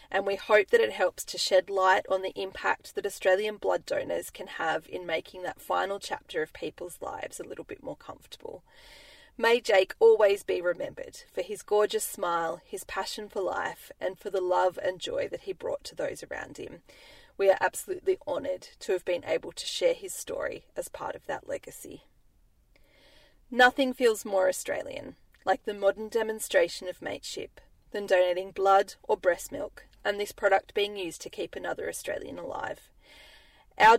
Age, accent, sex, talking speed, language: 30-49, Australian, female, 180 wpm, English